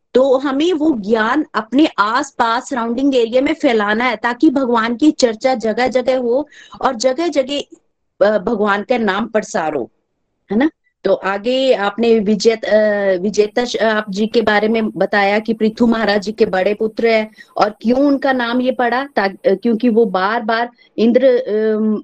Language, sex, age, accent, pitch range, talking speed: Hindi, female, 30-49, native, 215-270 Hz, 150 wpm